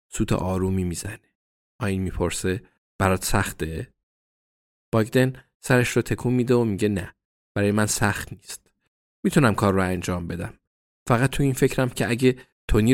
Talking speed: 145 wpm